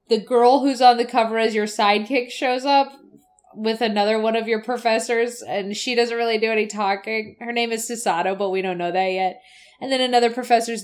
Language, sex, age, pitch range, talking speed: English, female, 20-39, 210-250 Hz, 210 wpm